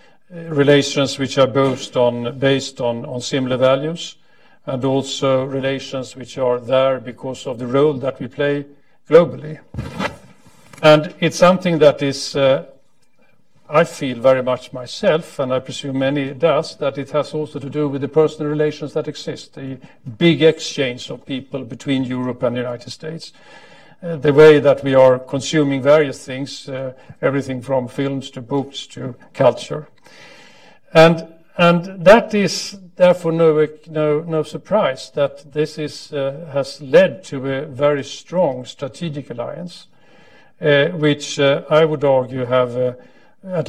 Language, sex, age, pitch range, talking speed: English, male, 50-69, 130-155 Hz, 150 wpm